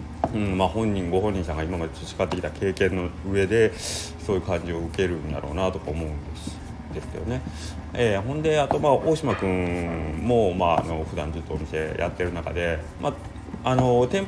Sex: male